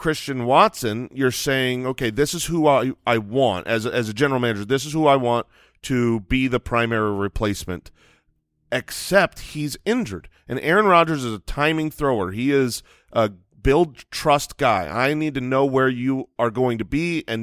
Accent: American